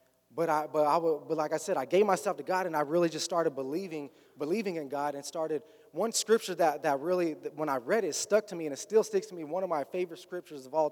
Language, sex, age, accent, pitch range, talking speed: English, male, 20-39, American, 160-205 Hz, 285 wpm